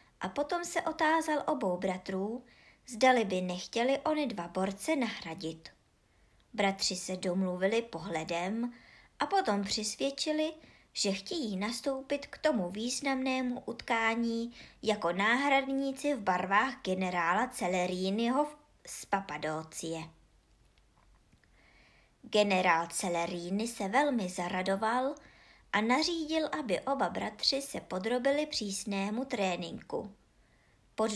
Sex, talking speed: male, 95 wpm